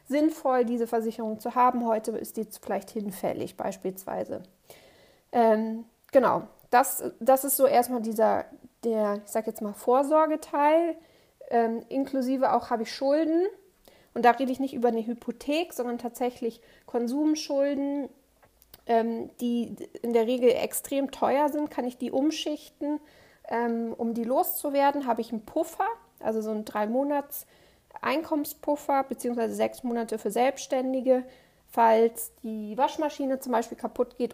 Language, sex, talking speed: German, female, 140 wpm